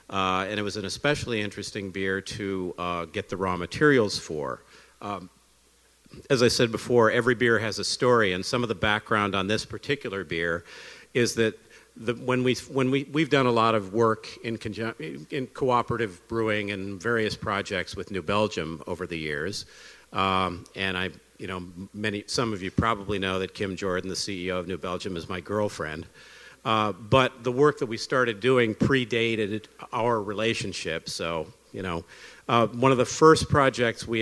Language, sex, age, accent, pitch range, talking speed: English, male, 50-69, American, 95-115 Hz, 180 wpm